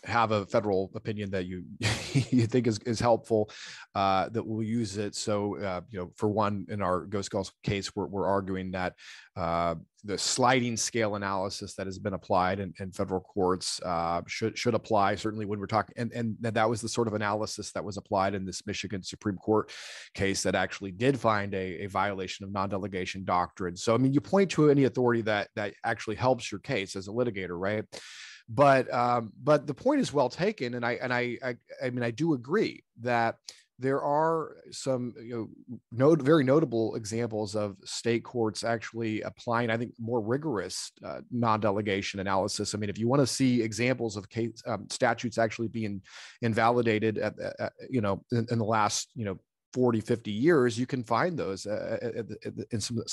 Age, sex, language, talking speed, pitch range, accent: 30-49, male, English, 200 wpm, 100-120 Hz, American